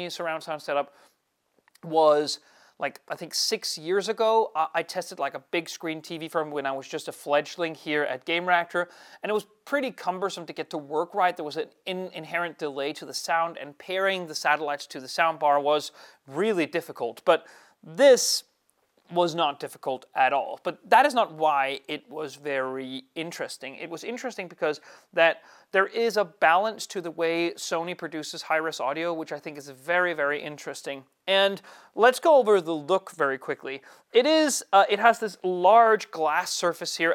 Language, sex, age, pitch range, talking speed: English, male, 30-49, 155-195 Hz, 185 wpm